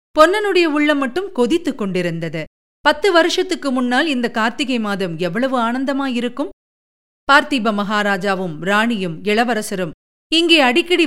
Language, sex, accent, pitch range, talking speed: Tamil, female, native, 210-280 Hz, 105 wpm